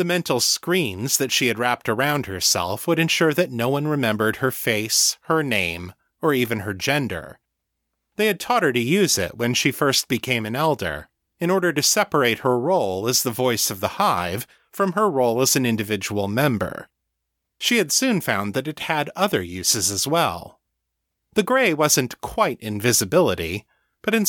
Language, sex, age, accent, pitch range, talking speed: English, male, 30-49, American, 105-160 Hz, 180 wpm